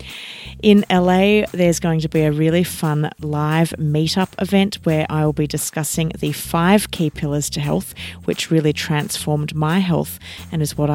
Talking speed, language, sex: 170 wpm, English, female